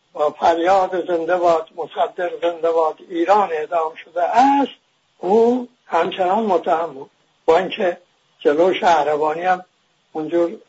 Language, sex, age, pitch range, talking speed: English, male, 60-79, 170-220 Hz, 110 wpm